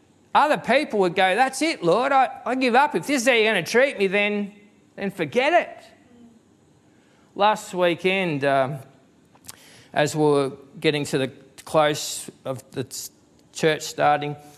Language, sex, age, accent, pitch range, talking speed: English, male, 40-59, Australian, 145-215 Hz, 155 wpm